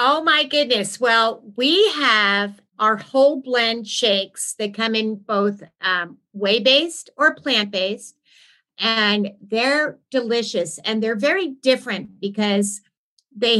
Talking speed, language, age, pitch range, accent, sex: 120 wpm, English, 50-69, 205-255 Hz, American, female